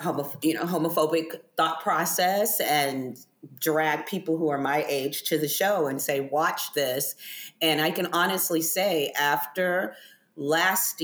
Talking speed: 140 wpm